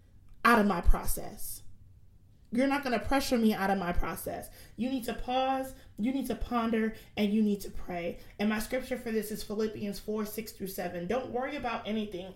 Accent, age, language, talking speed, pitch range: American, 30-49, English, 205 wpm, 195-245 Hz